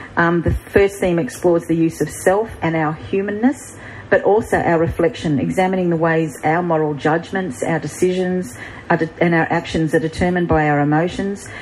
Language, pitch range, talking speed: English, 145-170 Hz, 165 wpm